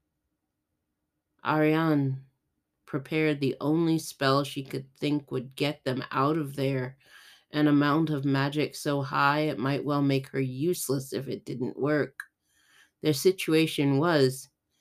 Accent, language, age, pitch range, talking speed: American, English, 30-49, 135-165 Hz, 135 wpm